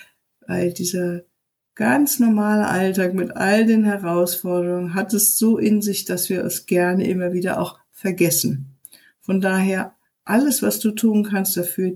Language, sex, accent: German, female, German